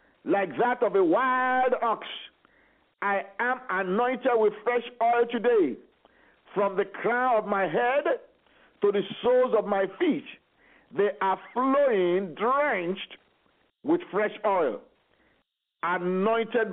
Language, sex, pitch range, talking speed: English, male, 220-310 Hz, 120 wpm